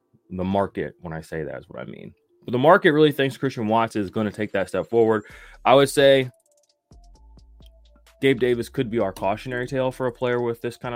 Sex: male